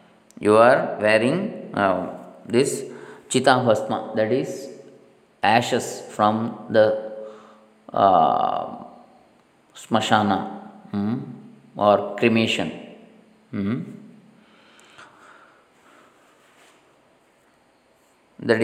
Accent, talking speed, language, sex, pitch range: native, 60 wpm, Kannada, male, 105-130 Hz